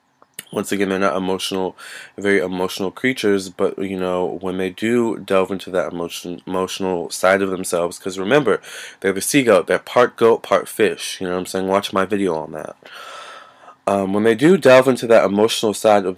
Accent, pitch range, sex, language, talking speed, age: American, 95-105 Hz, male, English, 195 wpm, 20-39